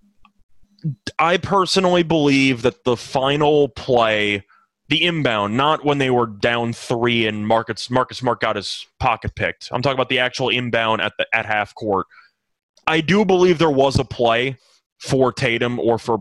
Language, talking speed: English, 165 wpm